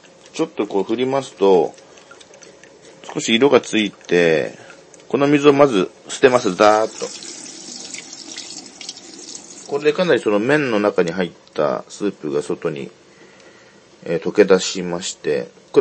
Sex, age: male, 40-59